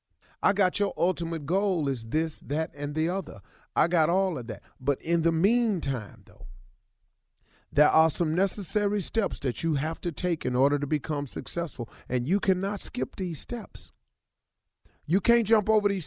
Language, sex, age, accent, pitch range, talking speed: English, male, 40-59, American, 150-210 Hz, 175 wpm